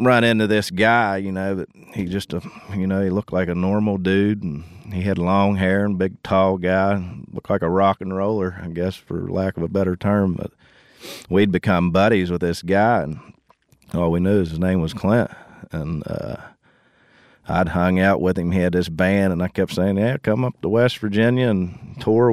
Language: English